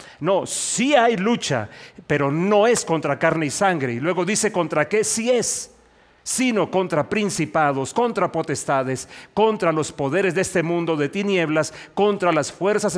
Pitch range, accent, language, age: 150-200 Hz, Mexican, English, 40-59